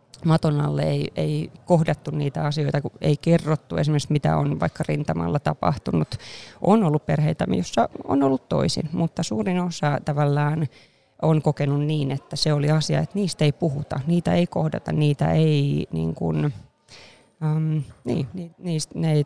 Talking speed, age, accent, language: 130 wpm, 20-39, native, Finnish